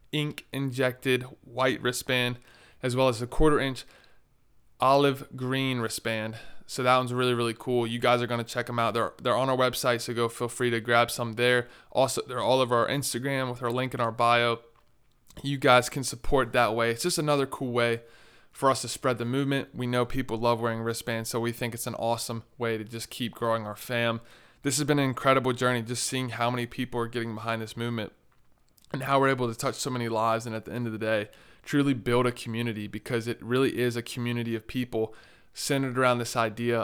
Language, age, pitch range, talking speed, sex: English, 20-39, 115-130 Hz, 220 wpm, male